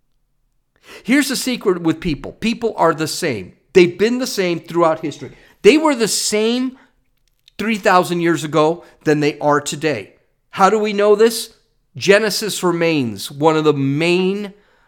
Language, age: English, 50-69